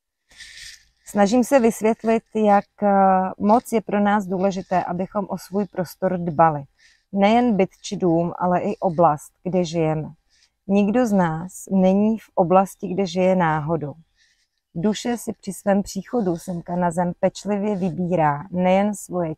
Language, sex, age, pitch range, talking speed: Czech, female, 30-49, 170-205 Hz, 135 wpm